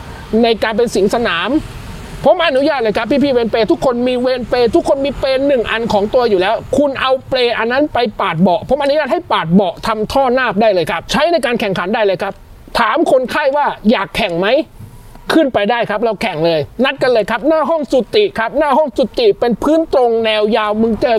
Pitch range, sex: 215-290 Hz, male